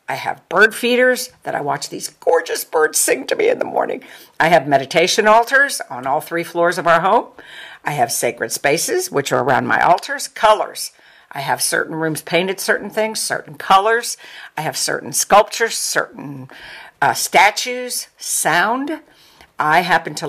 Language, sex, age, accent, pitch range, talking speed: English, female, 60-79, American, 155-230 Hz, 170 wpm